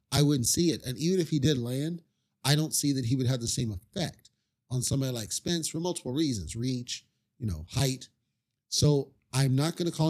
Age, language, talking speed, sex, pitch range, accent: 40-59, English, 220 wpm, male, 120-150 Hz, American